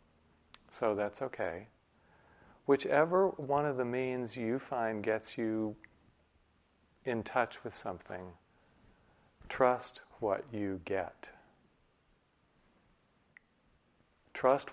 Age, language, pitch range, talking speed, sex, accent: 40-59, English, 100-120 Hz, 85 wpm, male, American